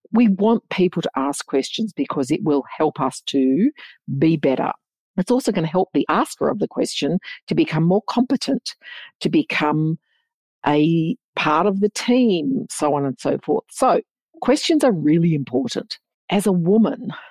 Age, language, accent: 50-69, English, Australian